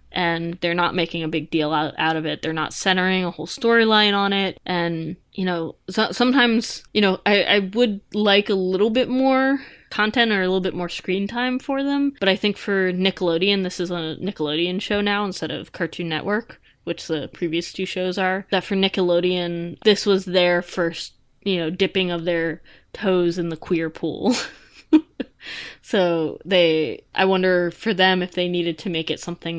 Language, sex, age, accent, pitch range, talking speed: English, female, 20-39, American, 170-205 Hz, 190 wpm